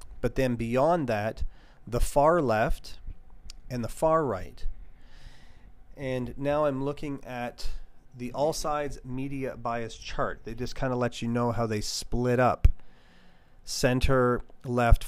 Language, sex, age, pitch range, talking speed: English, male, 40-59, 110-125 Hz, 140 wpm